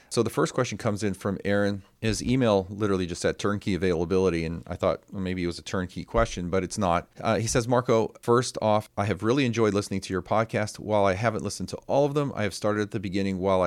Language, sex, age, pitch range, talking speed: English, male, 40-59, 95-110 Hz, 245 wpm